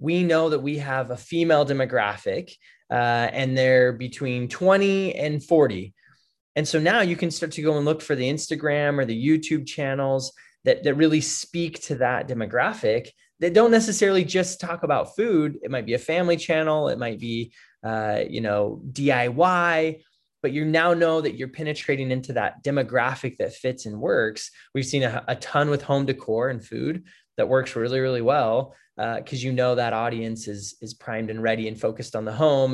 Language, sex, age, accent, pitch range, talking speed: English, male, 20-39, American, 120-155 Hz, 185 wpm